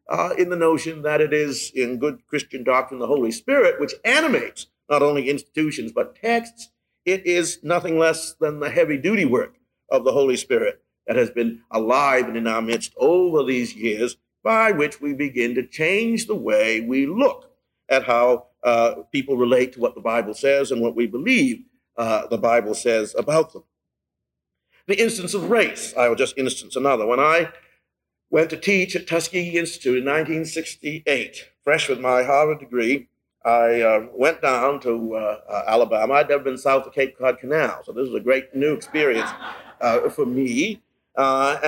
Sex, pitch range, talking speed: male, 125-185 Hz, 180 wpm